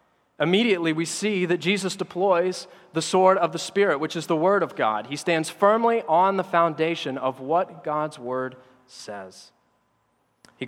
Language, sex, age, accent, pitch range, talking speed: English, male, 30-49, American, 130-165 Hz, 165 wpm